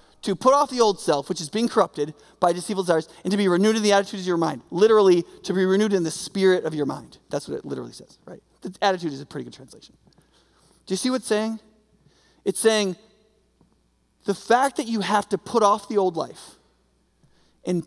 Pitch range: 190-265 Hz